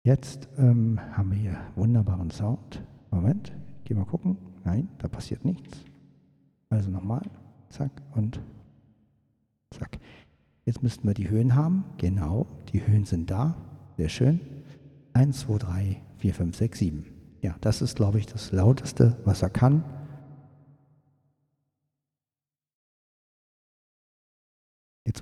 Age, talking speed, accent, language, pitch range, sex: 60-79, 125 wpm, German, German, 100-135 Hz, male